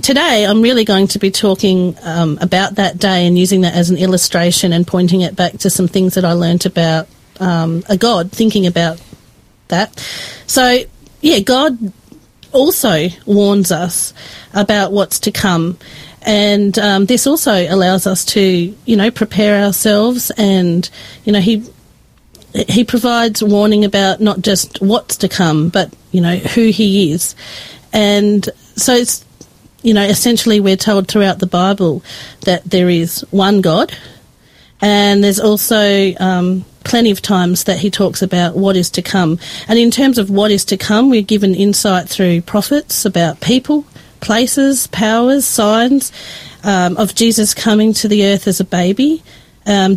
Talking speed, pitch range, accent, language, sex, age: 160 wpm, 185-220 Hz, Australian, English, female, 40-59